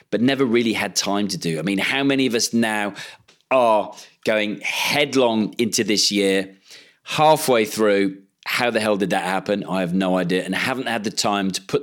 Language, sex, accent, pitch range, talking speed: English, male, British, 95-120 Hz, 200 wpm